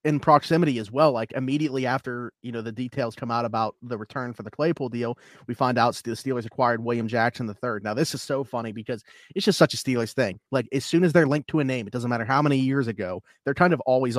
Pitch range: 115-140 Hz